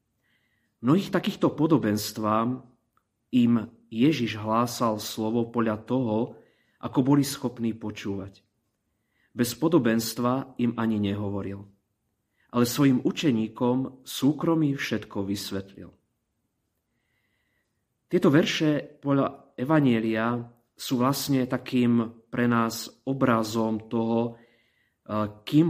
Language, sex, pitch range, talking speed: Slovak, male, 110-125 Hz, 85 wpm